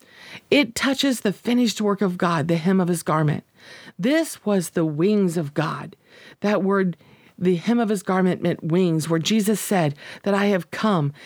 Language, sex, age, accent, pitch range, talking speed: English, female, 40-59, American, 185-250 Hz, 180 wpm